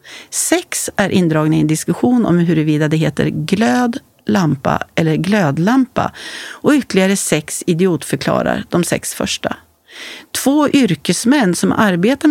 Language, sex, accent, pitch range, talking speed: Swedish, female, native, 180-270 Hz, 120 wpm